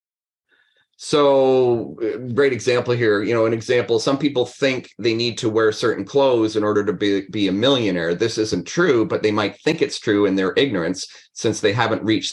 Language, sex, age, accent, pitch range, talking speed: English, male, 30-49, American, 110-145 Hz, 195 wpm